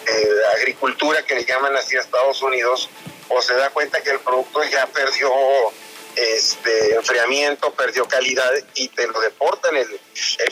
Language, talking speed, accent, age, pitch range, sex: Spanish, 160 wpm, Mexican, 40-59, 135-160 Hz, male